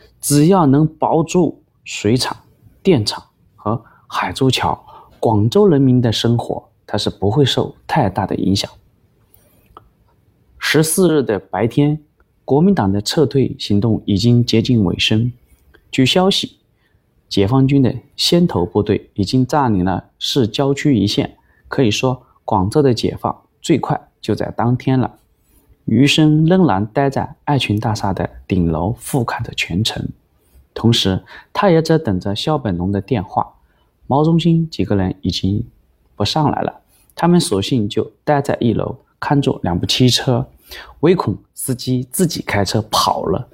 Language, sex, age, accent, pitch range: Chinese, male, 30-49, native, 105-145 Hz